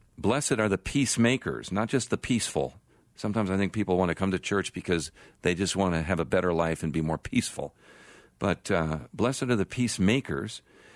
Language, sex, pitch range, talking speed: English, male, 85-100 Hz, 195 wpm